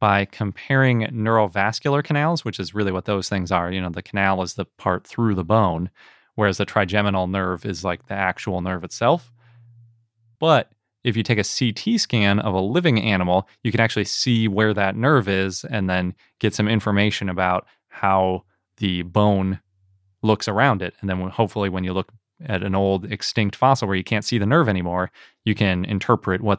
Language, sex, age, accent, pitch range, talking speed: English, male, 20-39, American, 95-120 Hz, 190 wpm